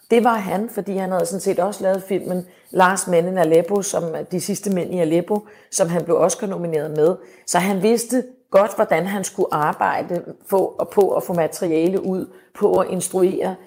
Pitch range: 175-210 Hz